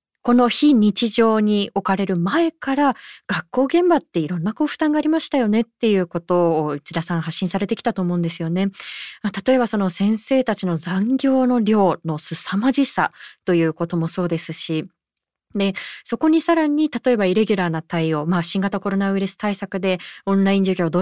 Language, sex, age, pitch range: Japanese, female, 20-39, 180-260 Hz